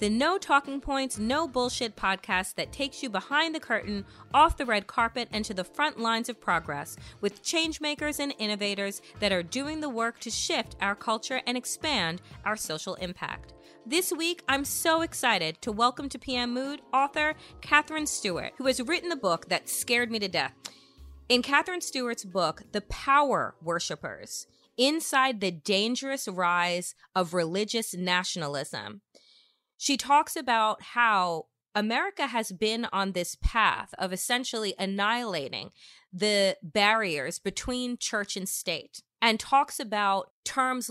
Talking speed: 150 wpm